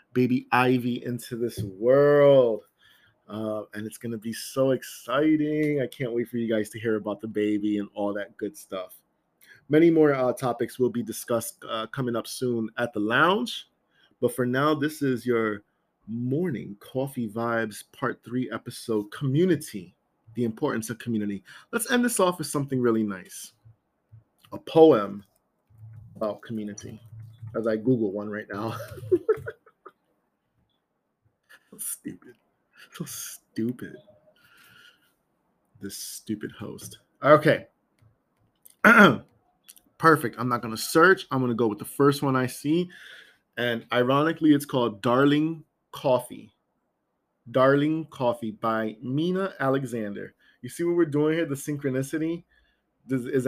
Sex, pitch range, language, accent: male, 110-140 Hz, English, American